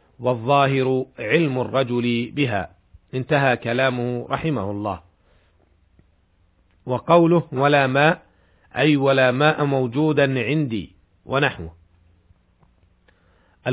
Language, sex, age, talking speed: Arabic, male, 50-69, 75 wpm